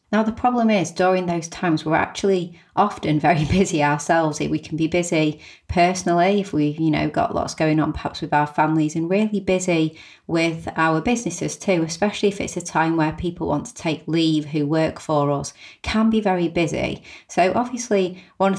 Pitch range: 155-185 Hz